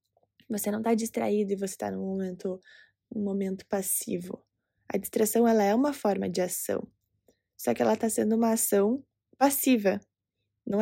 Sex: female